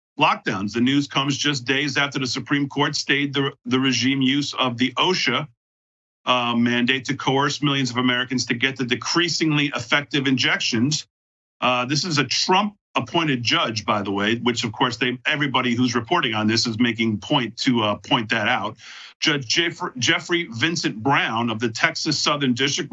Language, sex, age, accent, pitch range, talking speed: English, male, 50-69, American, 120-145 Hz, 180 wpm